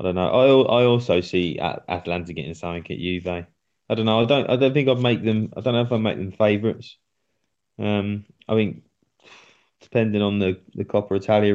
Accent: British